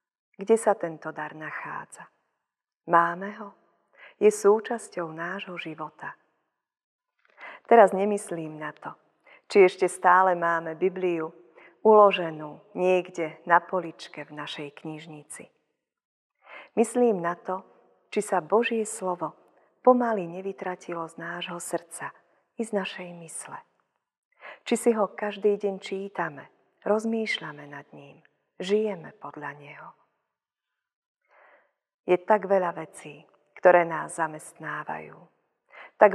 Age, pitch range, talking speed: 40-59, 165-210 Hz, 105 wpm